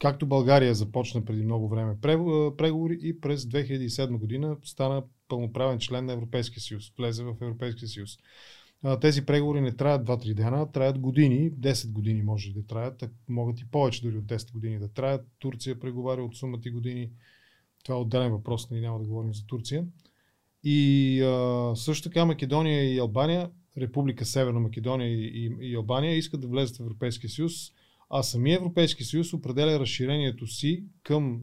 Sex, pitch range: male, 120-150 Hz